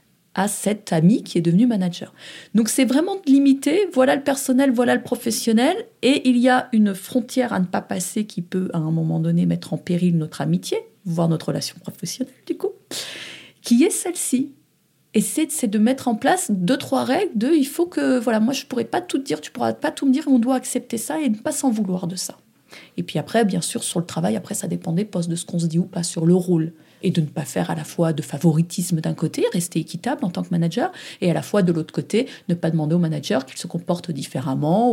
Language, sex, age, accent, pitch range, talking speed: French, female, 30-49, French, 175-240 Hz, 245 wpm